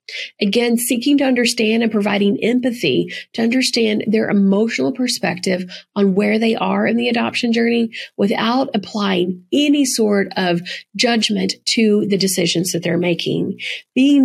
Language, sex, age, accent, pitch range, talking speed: English, female, 40-59, American, 200-245 Hz, 140 wpm